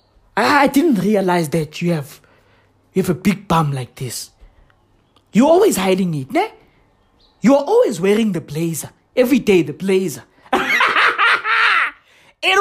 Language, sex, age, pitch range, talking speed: English, male, 20-39, 170-250 Hz, 135 wpm